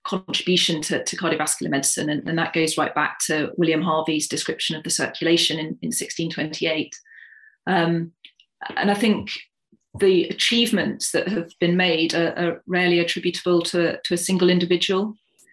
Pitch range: 165-190 Hz